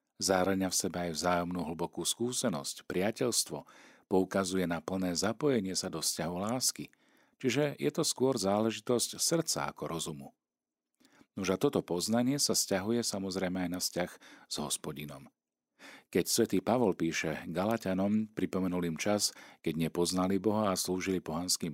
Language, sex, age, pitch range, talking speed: Slovak, male, 50-69, 85-110 Hz, 140 wpm